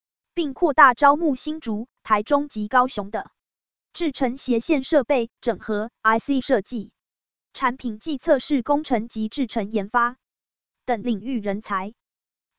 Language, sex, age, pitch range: Chinese, female, 20-39, 225-290 Hz